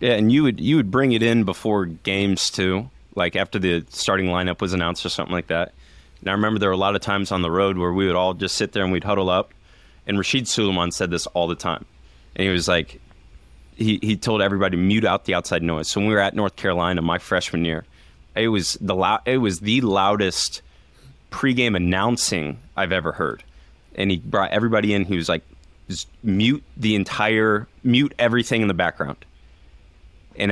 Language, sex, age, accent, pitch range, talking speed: English, male, 20-39, American, 90-115 Hz, 210 wpm